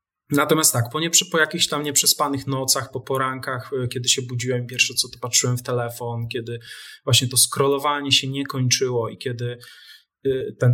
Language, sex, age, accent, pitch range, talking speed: Polish, male, 20-39, native, 125-145 Hz, 160 wpm